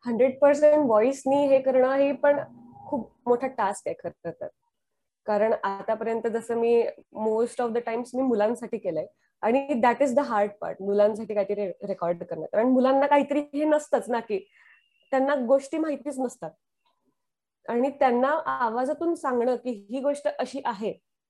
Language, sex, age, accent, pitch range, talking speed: Marathi, female, 20-39, native, 225-290 Hz, 150 wpm